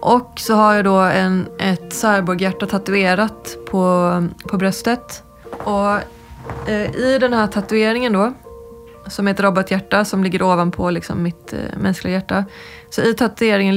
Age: 20-39